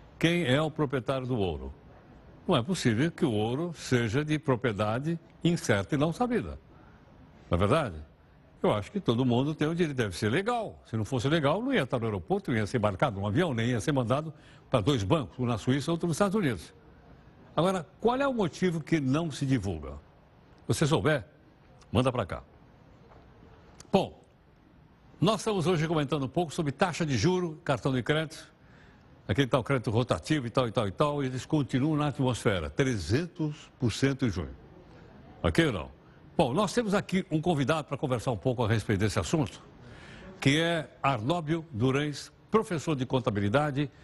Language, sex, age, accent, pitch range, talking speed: Portuguese, male, 60-79, Brazilian, 120-165 Hz, 185 wpm